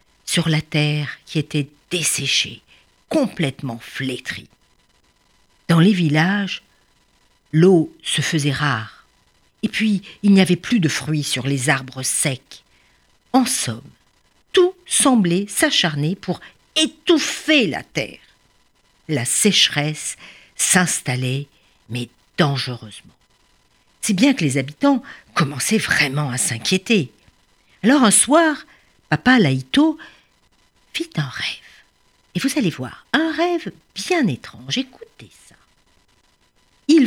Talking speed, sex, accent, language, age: 110 wpm, female, French, French, 50-69